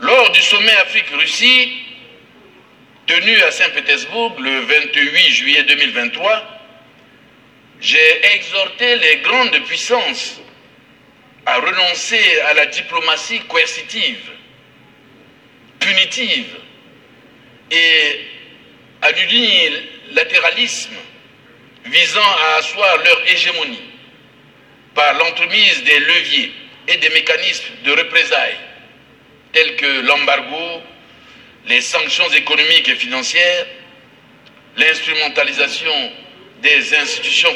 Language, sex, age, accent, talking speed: French, male, 60-79, French, 80 wpm